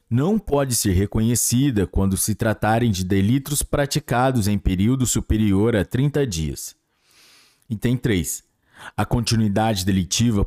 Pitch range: 105-135 Hz